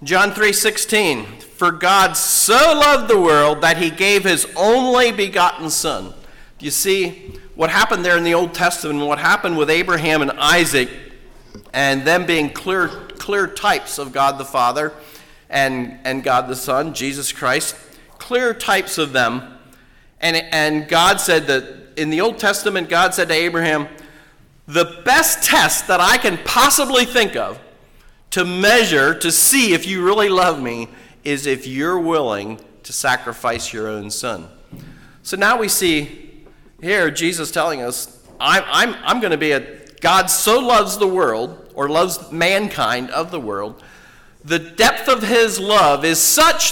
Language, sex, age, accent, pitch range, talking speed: English, male, 50-69, American, 145-200 Hz, 165 wpm